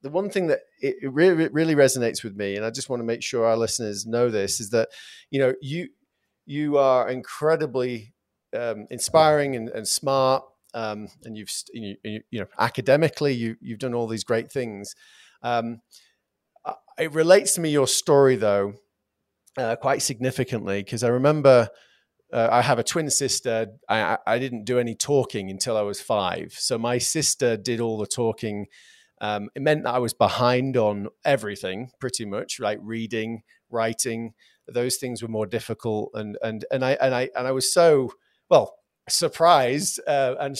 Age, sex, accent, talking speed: 30-49, male, British, 175 wpm